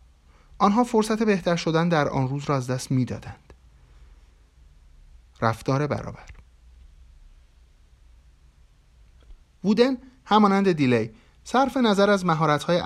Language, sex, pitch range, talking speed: Persian, male, 95-160 Hz, 95 wpm